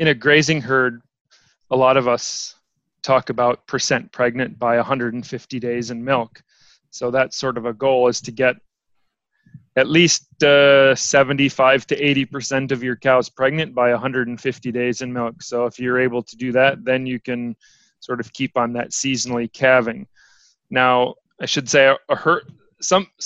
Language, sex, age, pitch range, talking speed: English, male, 30-49, 120-135 Hz, 165 wpm